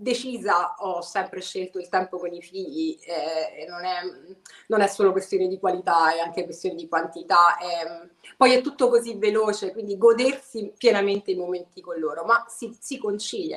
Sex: female